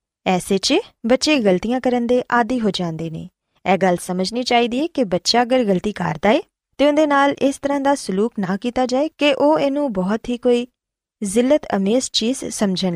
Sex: female